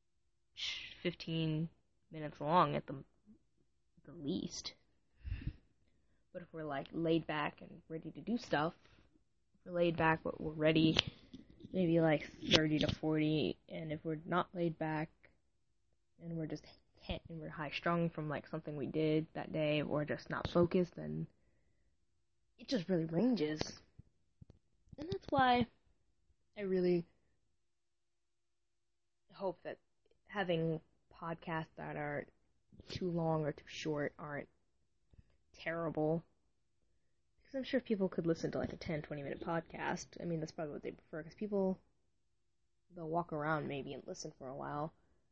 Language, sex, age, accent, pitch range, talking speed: English, female, 10-29, American, 150-180 Hz, 145 wpm